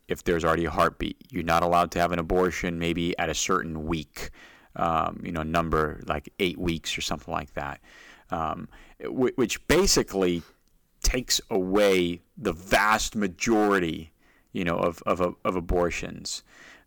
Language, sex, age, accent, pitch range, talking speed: English, male, 40-59, American, 85-100 Hz, 155 wpm